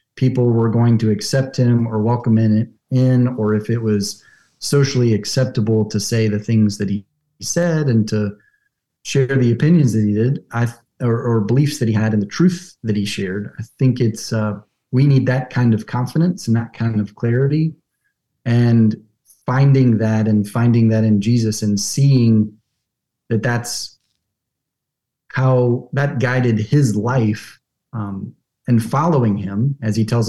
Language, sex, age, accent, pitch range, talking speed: English, male, 30-49, American, 110-130 Hz, 160 wpm